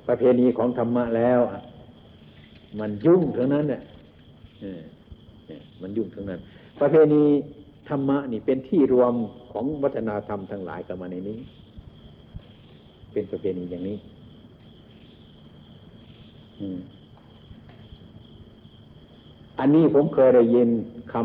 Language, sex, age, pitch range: Thai, male, 60-79, 95-125 Hz